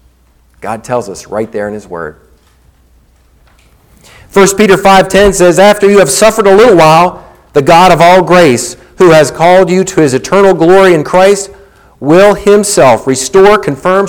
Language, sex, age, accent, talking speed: English, male, 50-69, American, 160 wpm